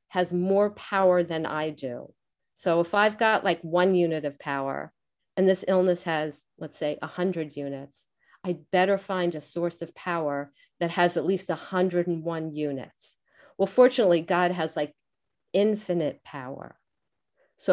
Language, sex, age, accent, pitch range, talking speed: English, female, 50-69, American, 165-210 Hz, 150 wpm